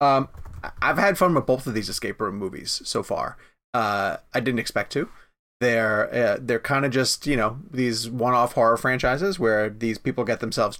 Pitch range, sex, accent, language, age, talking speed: 125-155 Hz, male, American, English, 30-49, 195 wpm